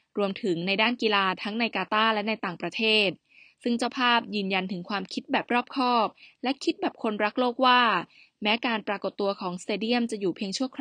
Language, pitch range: Thai, 195-240 Hz